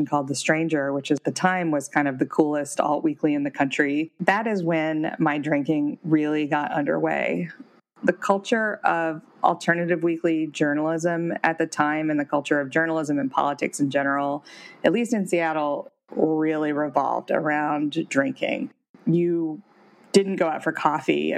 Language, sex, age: English, female, 20-39